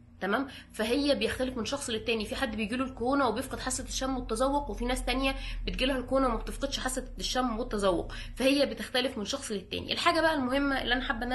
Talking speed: 190 wpm